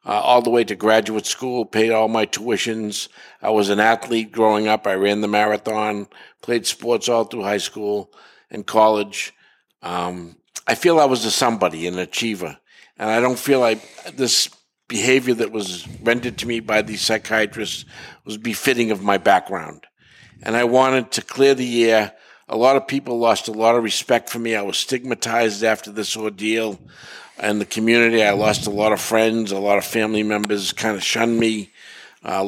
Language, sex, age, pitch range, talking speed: English, male, 50-69, 105-120 Hz, 185 wpm